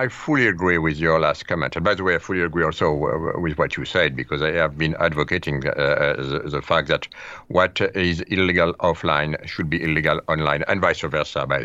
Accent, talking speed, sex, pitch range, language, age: French, 210 wpm, male, 85-110 Hz, English, 50-69